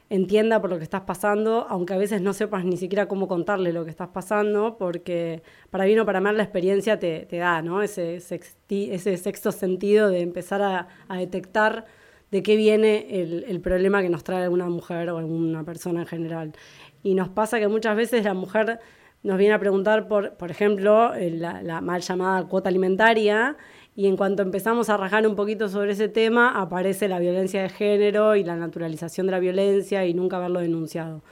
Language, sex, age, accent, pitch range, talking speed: Spanish, female, 20-39, Argentinian, 175-210 Hz, 195 wpm